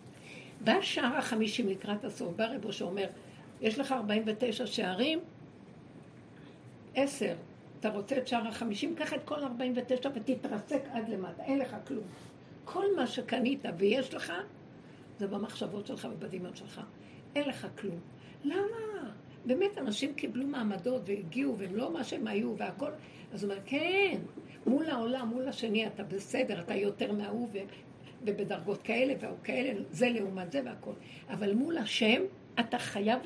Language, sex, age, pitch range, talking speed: Hebrew, female, 60-79, 210-270 Hz, 140 wpm